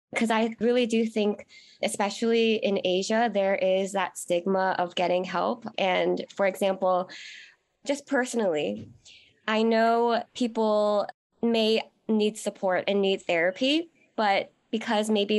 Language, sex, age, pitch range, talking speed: English, female, 20-39, 185-225 Hz, 125 wpm